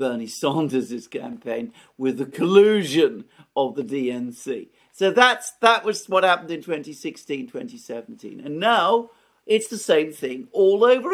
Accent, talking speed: British, 140 wpm